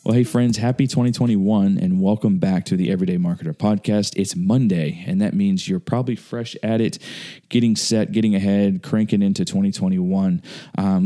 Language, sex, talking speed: English, male, 170 wpm